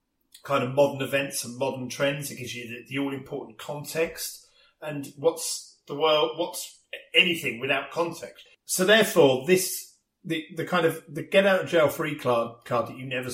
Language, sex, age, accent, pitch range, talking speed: English, male, 40-59, British, 115-165 Hz, 185 wpm